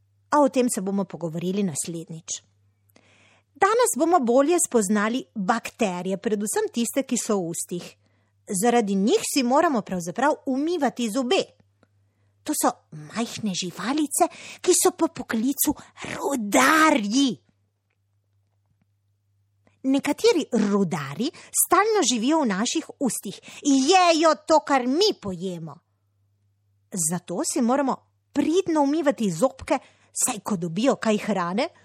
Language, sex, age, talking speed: Italian, female, 30-49, 105 wpm